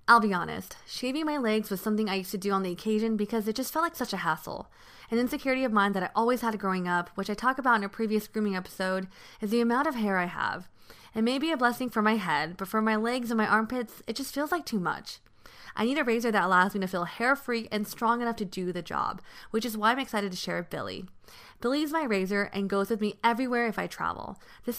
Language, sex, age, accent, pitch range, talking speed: English, female, 20-39, American, 190-240 Hz, 265 wpm